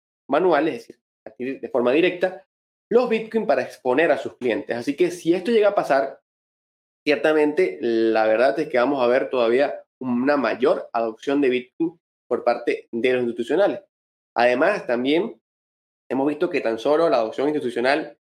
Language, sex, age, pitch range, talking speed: Spanish, male, 20-39, 120-150 Hz, 160 wpm